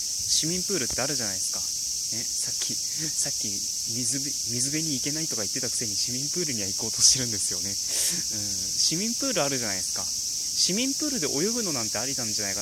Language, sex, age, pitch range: Japanese, male, 20-39, 100-145 Hz